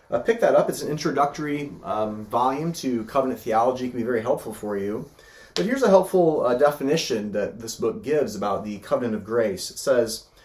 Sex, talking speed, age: male, 200 wpm, 30-49